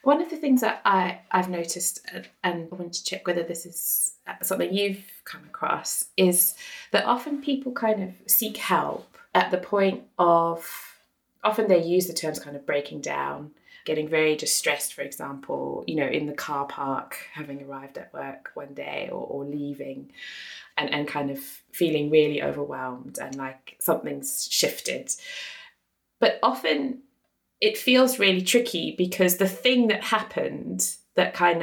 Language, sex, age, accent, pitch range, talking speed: English, female, 20-39, British, 150-225 Hz, 160 wpm